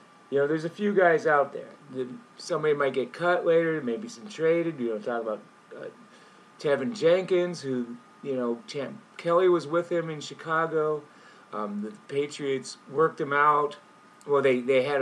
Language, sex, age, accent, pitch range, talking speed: English, male, 40-59, American, 120-175 Hz, 175 wpm